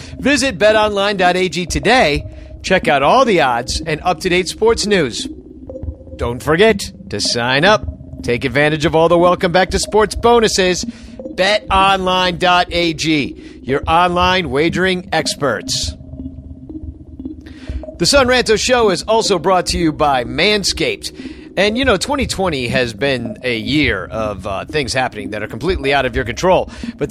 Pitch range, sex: 140-200 Hz, male